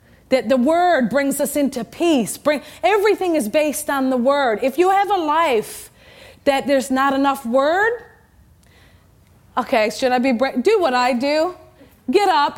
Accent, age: American, 30-49